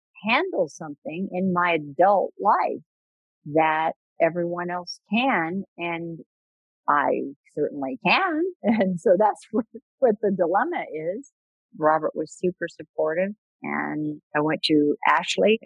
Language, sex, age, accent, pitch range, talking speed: English, female, 50-69, American, 155-195 Hz, 120 wpm